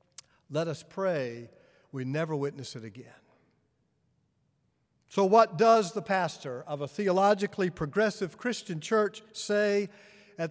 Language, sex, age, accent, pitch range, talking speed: English, male, 50-69, American, 155-225 Hz, 120 wpm